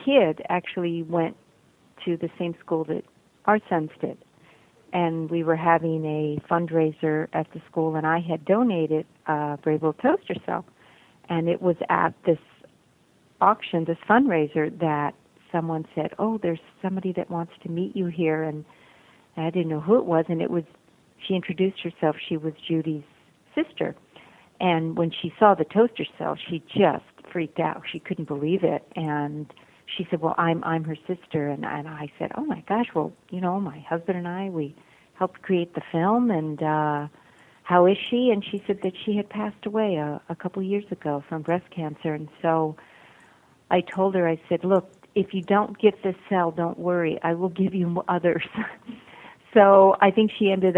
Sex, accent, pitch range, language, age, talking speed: female, American, 160-190 Hz, English, 50-69, 185 wpm